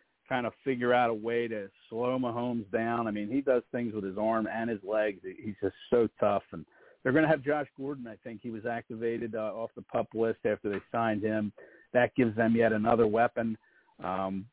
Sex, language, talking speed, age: male, English, 220 wpm, 50-69